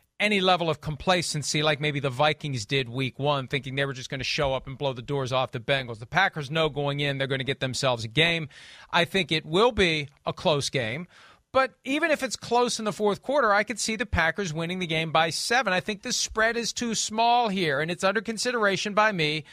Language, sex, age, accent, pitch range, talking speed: English, male, 40-59, American, 150-210 Hz, 245 wpm